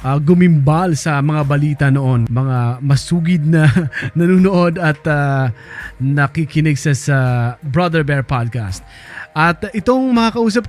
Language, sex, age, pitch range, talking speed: Filipino, male, 20-39, 135-170 Hz, 125 wpm